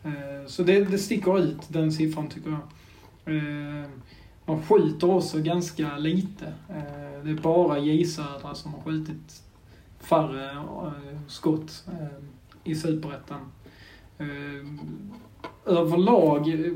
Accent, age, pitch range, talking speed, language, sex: native, 20-39, 145-160 Hz, 95 wpm, Swedish, male